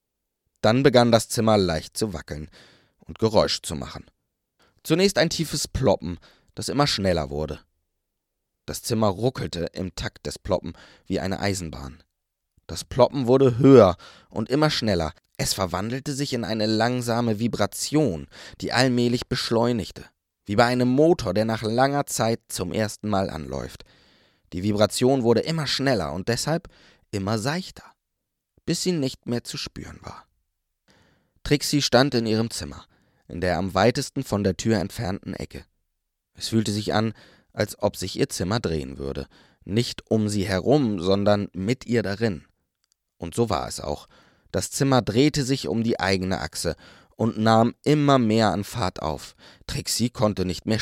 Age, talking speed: 20-39, 155 wpm